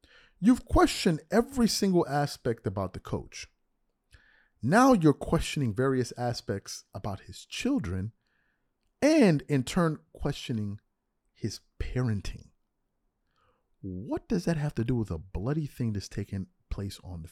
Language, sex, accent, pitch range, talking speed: English, male, American, 105-170 Hz, 130 wpm